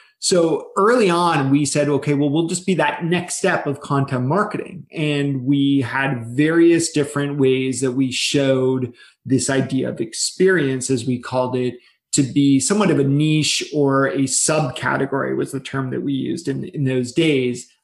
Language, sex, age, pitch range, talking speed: English, male, 30-49, 135-170 Hz, 175 wpm